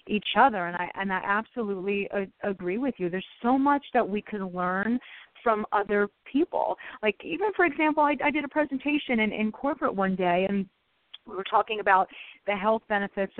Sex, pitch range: female, 185-245 Hz